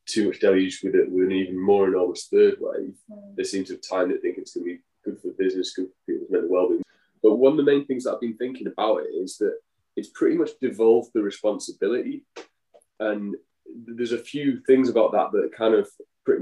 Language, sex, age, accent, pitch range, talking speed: English, male, 20-39, British, 320-435 Hz, 235 wpm